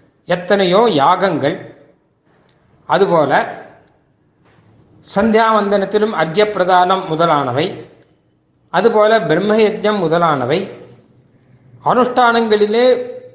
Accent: native